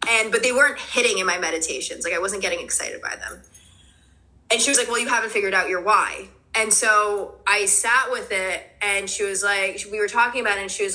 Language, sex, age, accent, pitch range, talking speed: English, female, 20-39, American, 190-230 Hz, 240 wpm